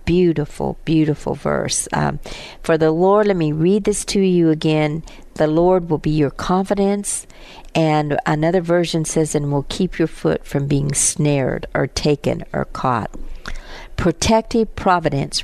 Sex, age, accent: female, 50-69, American